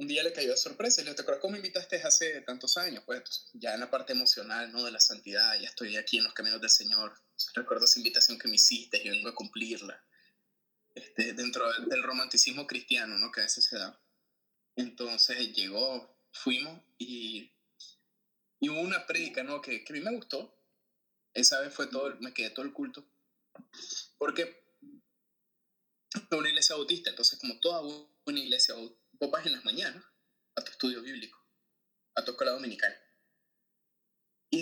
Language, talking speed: Spanish, 180 wpm